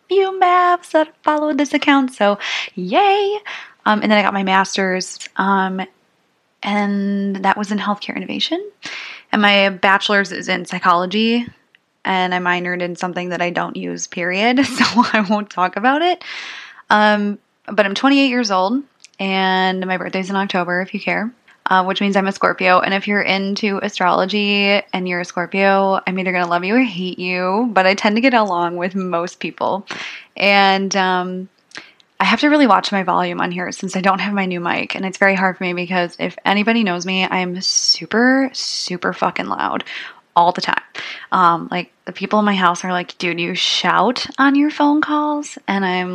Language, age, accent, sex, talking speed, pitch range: English, 20-39, American, female, 190 wpm, 185-220 Hz